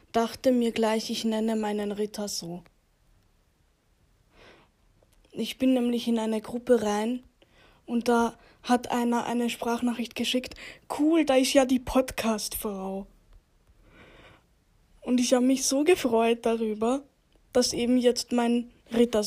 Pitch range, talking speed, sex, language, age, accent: 220-250 Hz, 125 wpm, female, German, 10-29, German